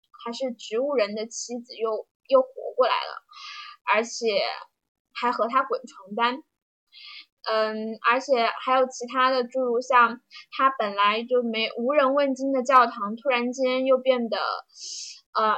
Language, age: Chinese, 10-29